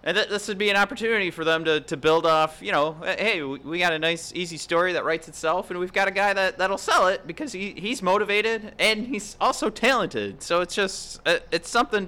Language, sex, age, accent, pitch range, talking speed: English, male, 30-49, American, 115-165 Hz, 245 wpm